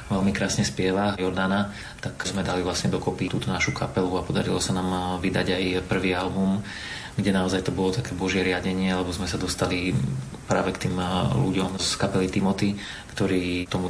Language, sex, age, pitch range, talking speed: Slovak, male, 30-49, 95-100 Hz, 175 wpm